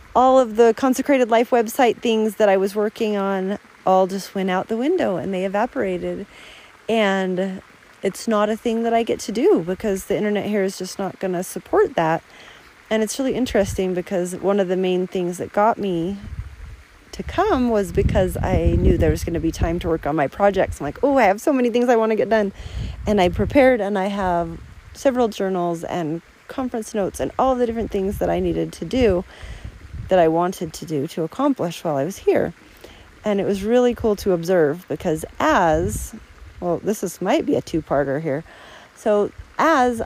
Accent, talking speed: American, 200 wpm